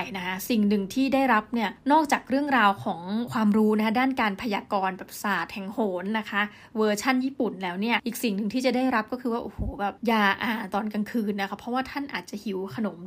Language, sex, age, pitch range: Thai, female, 20-39, 200-250 Hz